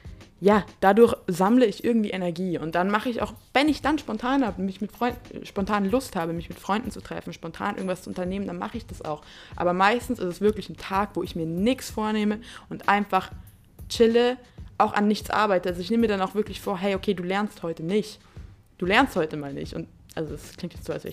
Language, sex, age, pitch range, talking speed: German, female, 20-39, 175-220 Hz, 230 wpm